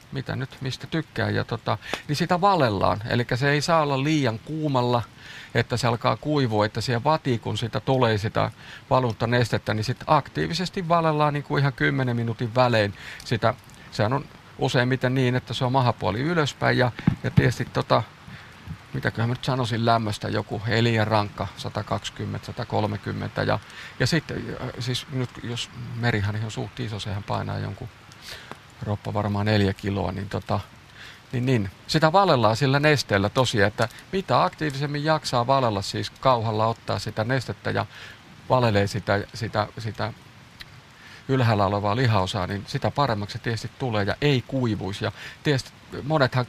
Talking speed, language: 145 wpm, Finnish